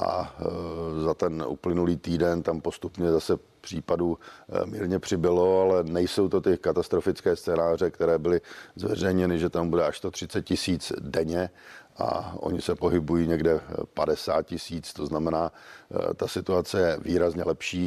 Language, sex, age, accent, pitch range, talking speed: Czech, male, 50-69, native, 85-90 Hz, 140 wpm